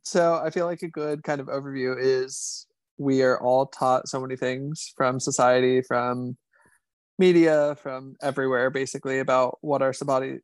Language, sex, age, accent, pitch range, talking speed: English, male, 20-39, American, 130-140 Hz, 160 wpm